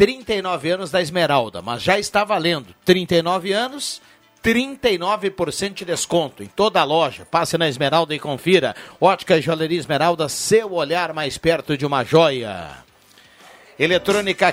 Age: 60-79